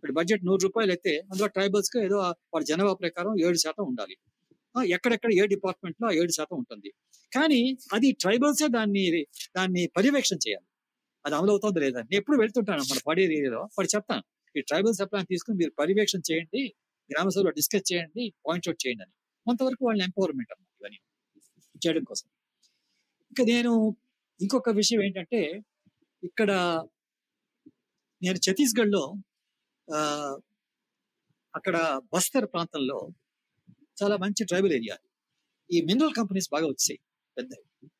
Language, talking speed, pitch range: Telugu, 125 wpm, 180-235 Hz